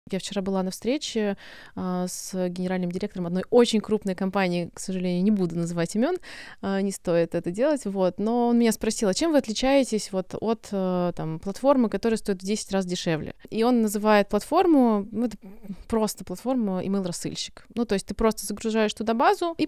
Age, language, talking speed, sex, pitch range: 20-39, Russian, 190 wpm, female, 185-220 Hz